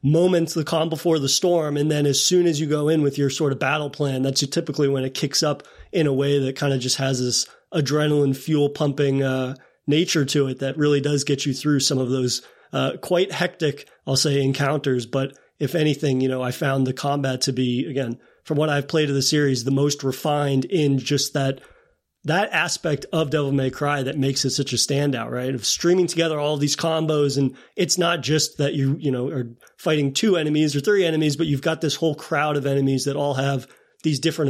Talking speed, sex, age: 225 wpm, male, 30-49